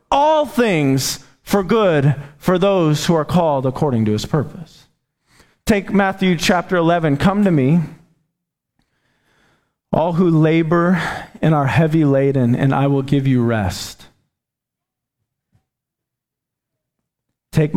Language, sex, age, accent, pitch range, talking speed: English, male, 40-59, American, 120-150 Hz, 115 wpm